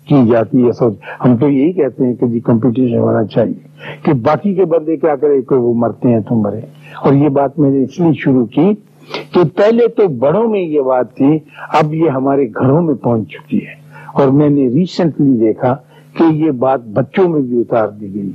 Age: 60-79